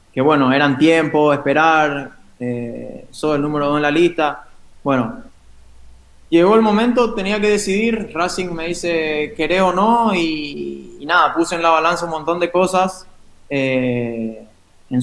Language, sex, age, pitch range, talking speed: Spanish, male, 20-39, 135-165 Hz, 155 wpm